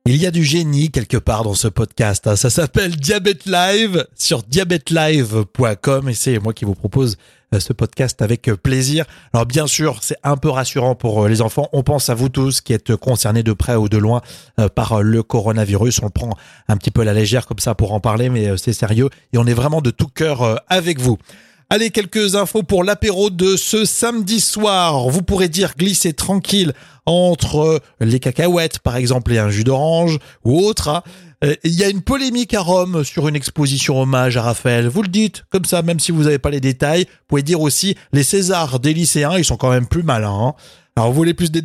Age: 30-49